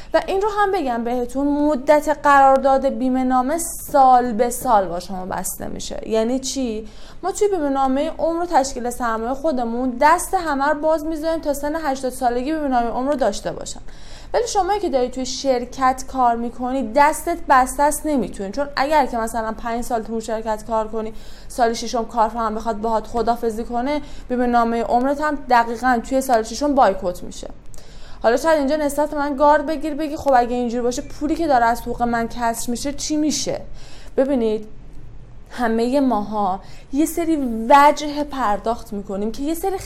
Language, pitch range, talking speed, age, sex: Persian, 230-290 Hz, 160 wpm, 20-39, female